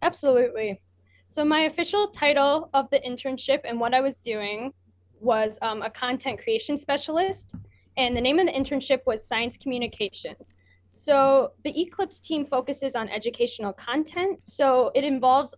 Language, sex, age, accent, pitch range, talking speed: English, female, 10-29, American, 225-285 Hz, 150 wpm